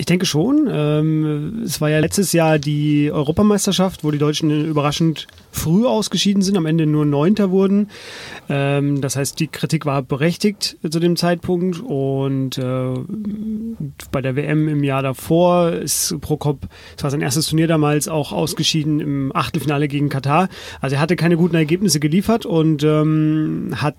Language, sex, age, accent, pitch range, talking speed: German, male, 30-49, German, 140-170 Hz, 155 wpm